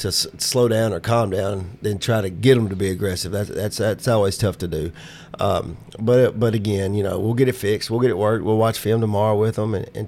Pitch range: 100-115 Hz